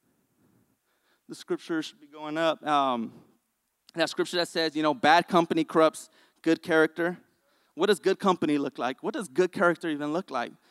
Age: 20-39